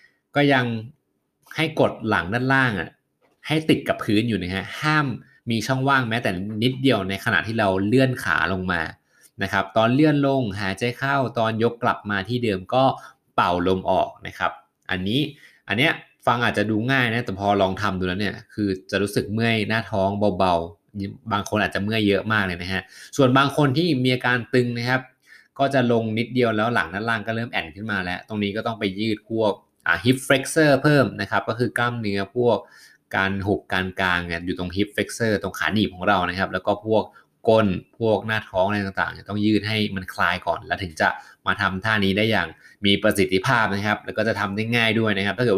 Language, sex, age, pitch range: Thai, male, 20-39, 100-125 Hz